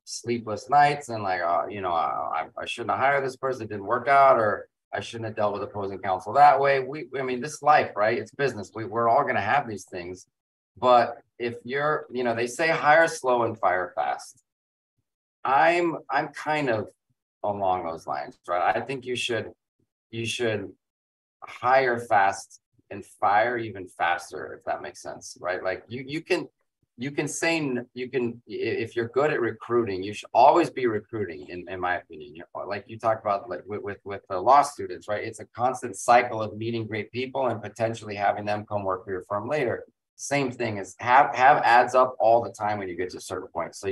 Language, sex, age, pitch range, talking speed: English, male, 30-49, 100-130 Hz, 210 wpm